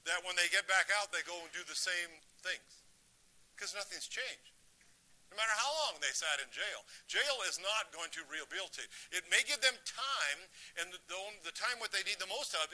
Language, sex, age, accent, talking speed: English, male, 50-69, American, 205 wpm